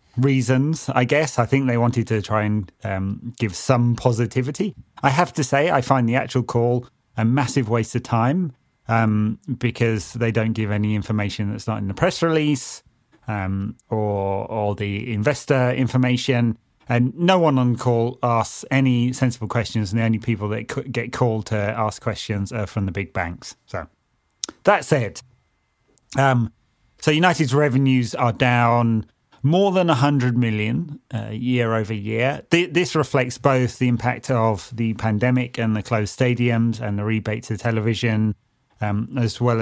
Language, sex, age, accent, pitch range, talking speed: English, male, 30-49, British, 110-130 Hz, 170 wpm